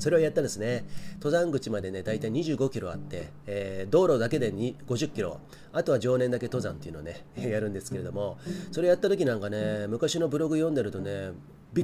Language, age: Japanese, 30-49